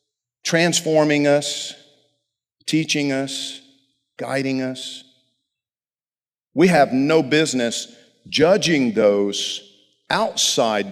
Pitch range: 135-190 Hz